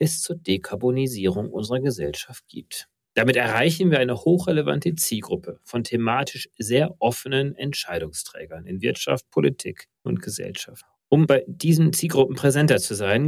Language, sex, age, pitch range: German, male, 40-59, 95-150 Hz